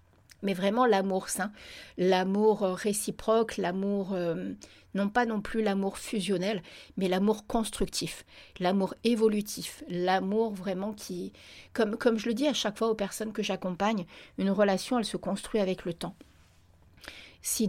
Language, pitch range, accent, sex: French, 185-215 Hz, French, female